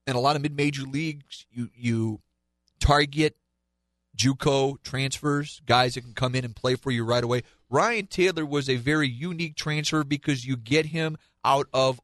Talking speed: 175 wpm